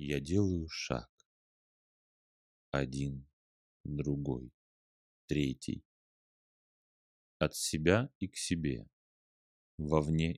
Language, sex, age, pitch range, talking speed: Russian, male, 30-49, 70-85 Hz, 70 wpm